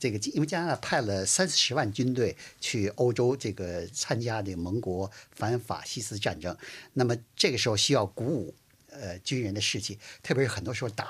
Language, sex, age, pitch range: Chinese, male, 50-69, 105-145 Hz